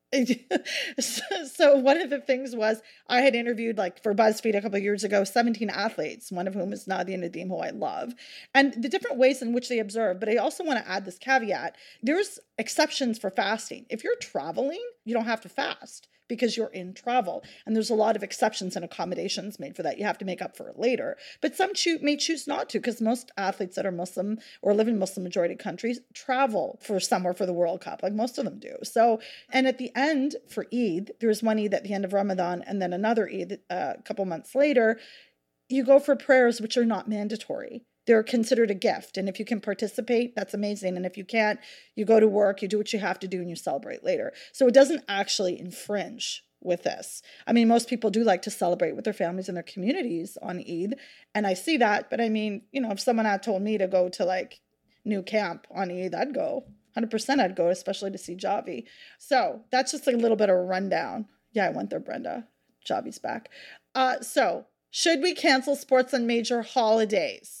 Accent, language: American, English